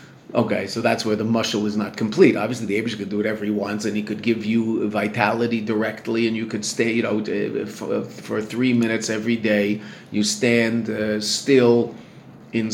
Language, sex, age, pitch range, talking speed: English, male, 40-59, 110-160 Hz, 195 wpm